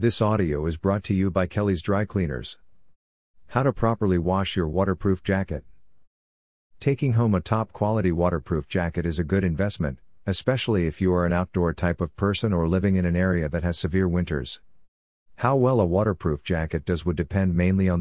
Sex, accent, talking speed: male, American, 185 wpm